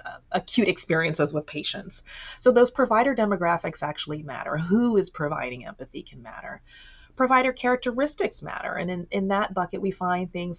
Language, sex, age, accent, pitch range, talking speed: English, female, 30-49, American, 150-210 Hz, 155 wpm